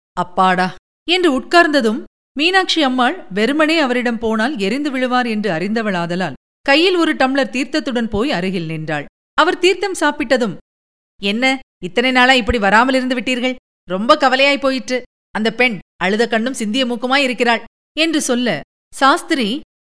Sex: female